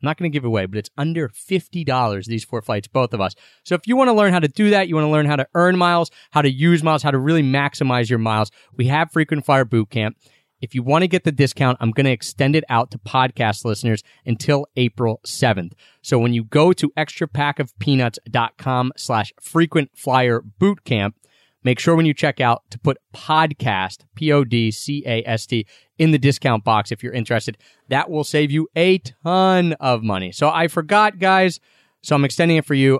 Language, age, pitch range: English, 30-49, 115-155 Hz